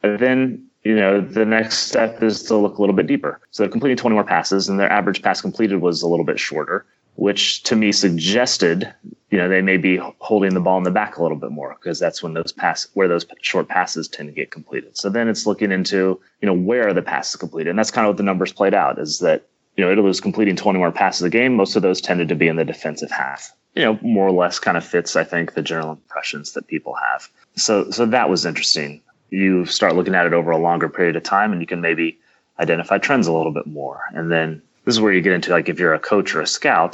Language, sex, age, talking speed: English, male, 30-49, 265 wpm